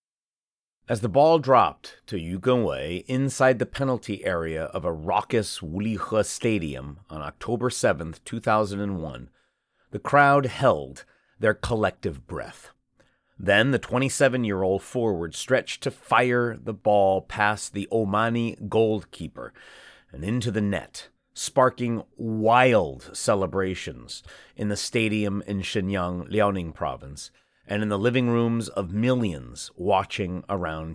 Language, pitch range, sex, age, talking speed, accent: English, 95-125 Hz, male, 30-49, 120 wpm, American